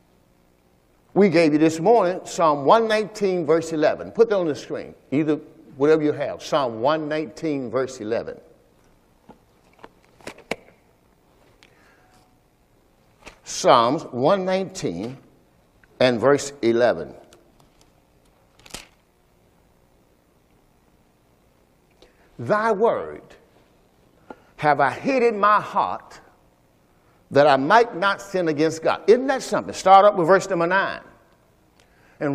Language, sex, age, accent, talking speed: English, male, 60-79, American, 95 wpm